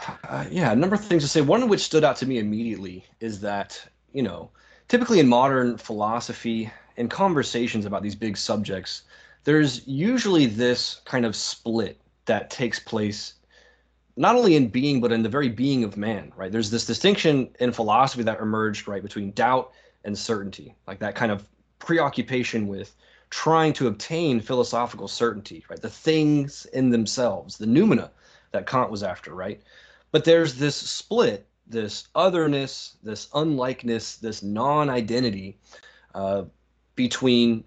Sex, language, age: male, English, 20-39